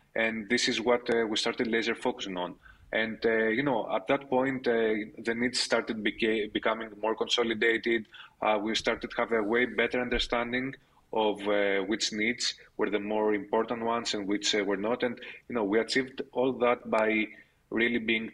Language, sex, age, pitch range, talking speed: English, male, 30-49, 100-115 Hz, 185 wpm